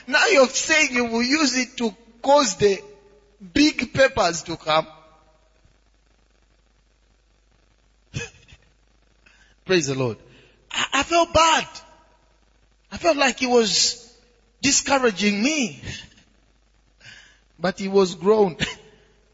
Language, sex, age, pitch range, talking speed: English, male, 30-49, 145-210 Hz, 100 wpm